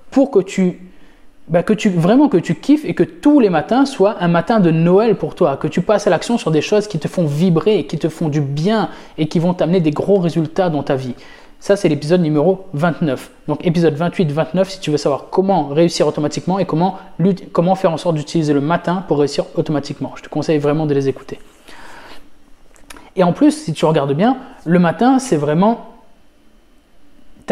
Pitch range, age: 150-190 Hz, 20-39